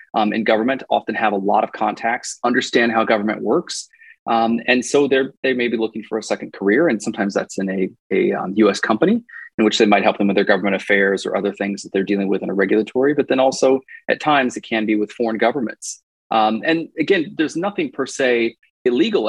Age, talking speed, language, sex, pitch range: 20-39, 225 wpm, English, male, 100-125 Hz